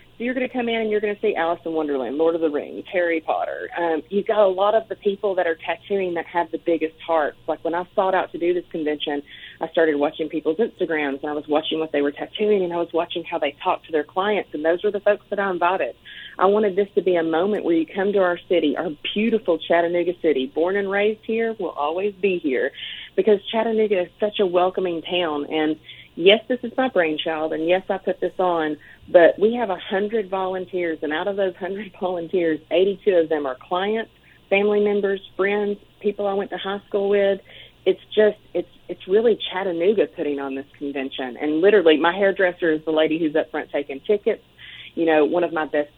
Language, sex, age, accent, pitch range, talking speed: English, female, 30-49, American, 160-205 Hz, 230 wpm